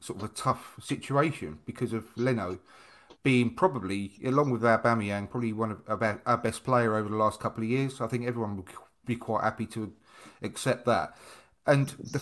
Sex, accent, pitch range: male, British, 115-140 Hz